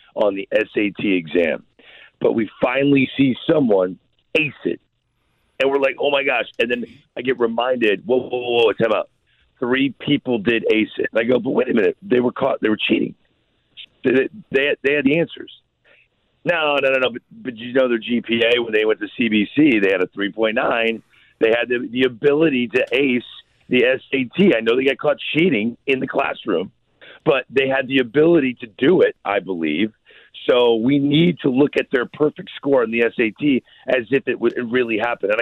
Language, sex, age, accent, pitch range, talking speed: English, male, 50-69, American, 120-150 Hz, 200 wpm